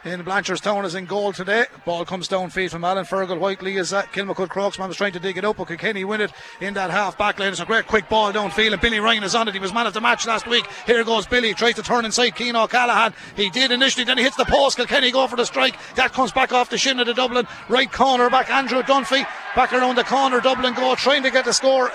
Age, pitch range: 30-49, 210-245 Hz